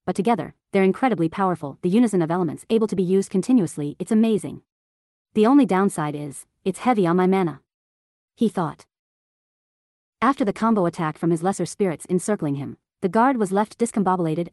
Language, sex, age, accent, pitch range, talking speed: English, female, 30-49, American, 170-215 Hz, 175 wpm